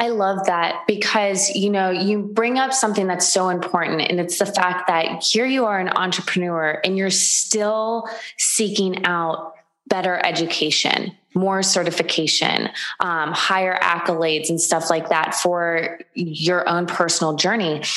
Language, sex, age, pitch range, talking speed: English, female, 20-39, 175-210 Hz, 145 wpm